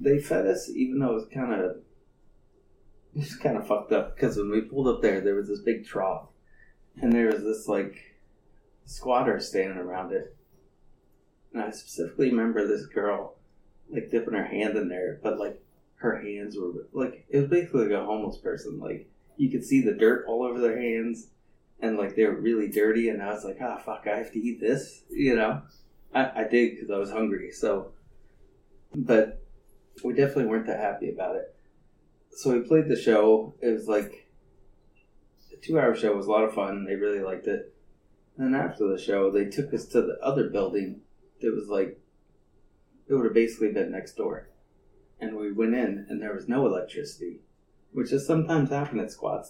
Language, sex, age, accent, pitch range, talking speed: English, male, 20-39, American, 100-130 Hz, 195 wpm